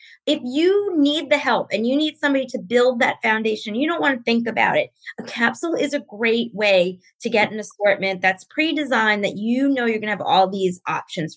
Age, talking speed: 20-39, 220 wpm